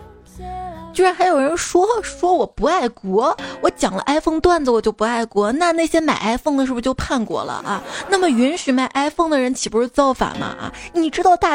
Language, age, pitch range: Chinese, 20-39, 225-300 Hz